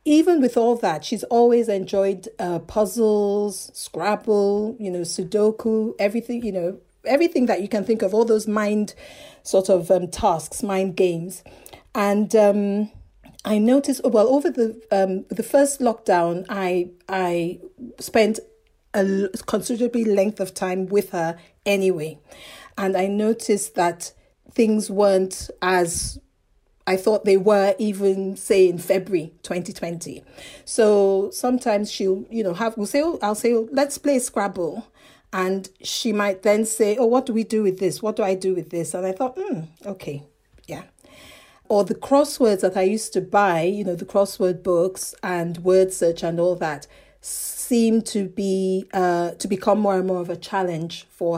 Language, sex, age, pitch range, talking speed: English, female, 40-59, 185-230 Hz, 165 wpm